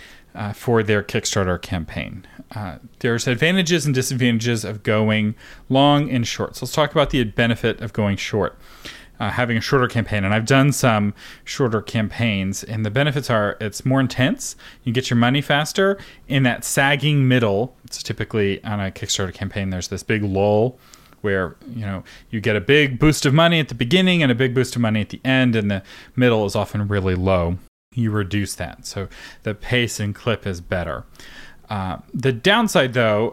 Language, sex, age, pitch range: English, male, 30-49, 105-130 Hz